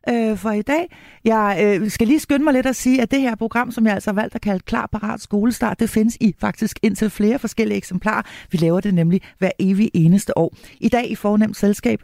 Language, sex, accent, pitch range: Danish, female, native, 165-225 Hz